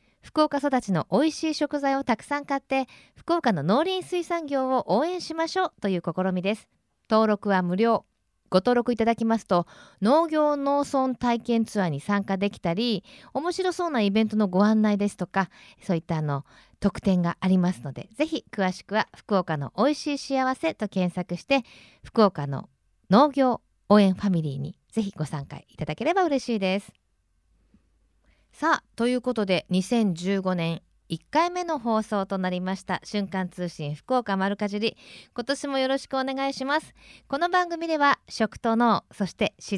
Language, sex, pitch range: Japanese, female, 190-275 Hz